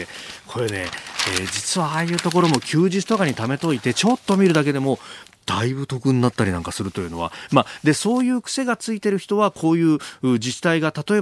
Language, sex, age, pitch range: Japanese, male, 40-59, 120-195 Hz